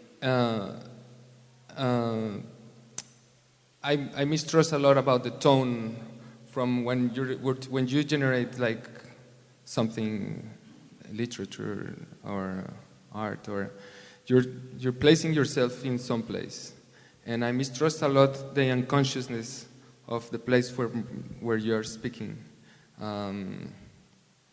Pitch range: 115-130 Hz